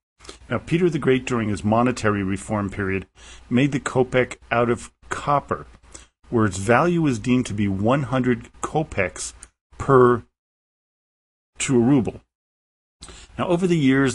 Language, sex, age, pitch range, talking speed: English, male, 50-69, 100-125 Hz, 135 wpm